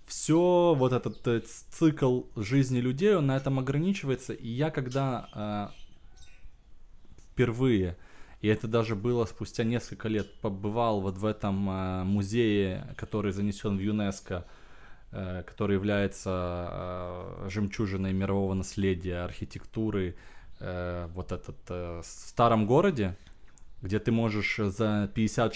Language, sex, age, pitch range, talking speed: Russian, male, 20-39, 95-115 Hz, 125 wpm